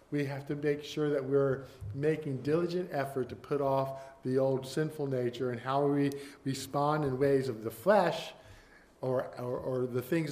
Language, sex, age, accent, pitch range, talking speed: English, male, 50-69, American, 135-170 Hz, 180 wpm